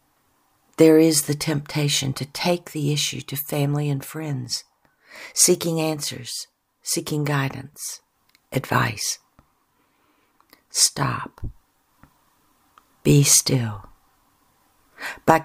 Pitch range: 135-160 Hz